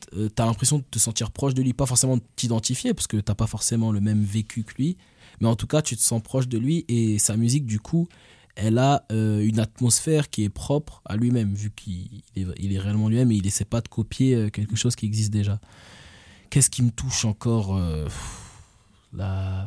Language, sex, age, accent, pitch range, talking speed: French, male, 20-39, French, 100-120 Hz, 225 wpm